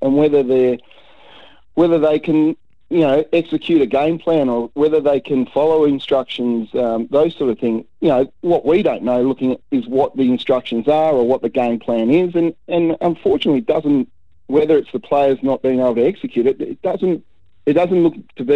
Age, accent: 40-59, Australian